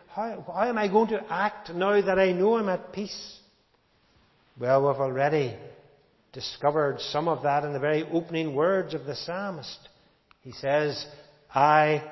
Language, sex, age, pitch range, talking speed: English, male, 60-79, 135-190 Hz, 155 wpm